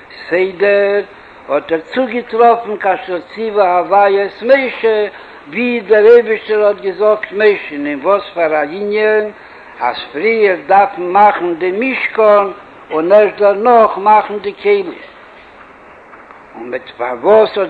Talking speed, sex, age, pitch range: 100 wpm, male, 60-79, 195-225 Hz